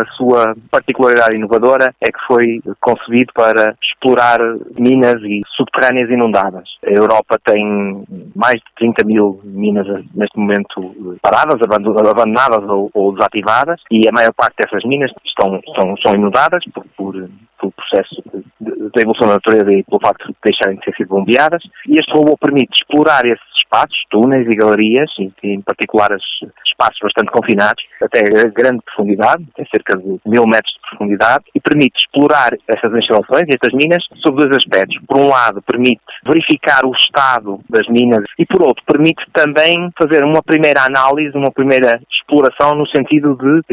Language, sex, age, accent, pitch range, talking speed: Portuguese, male, 30-49, Portuguese, 110-145 Hz, 160 wpm